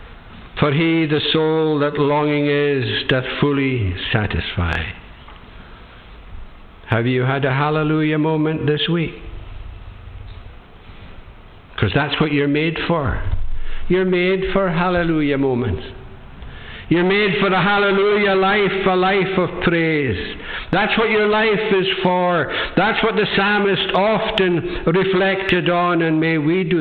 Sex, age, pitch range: male, 60-79, 115-190 Hz